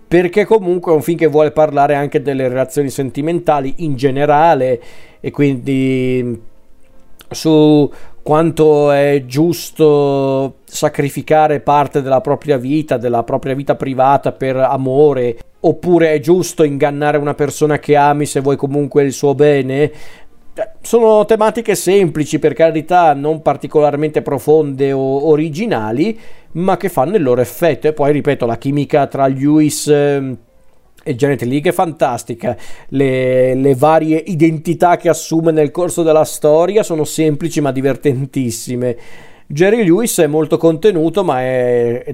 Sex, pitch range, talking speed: male, 135-155 Hz, 135 wpm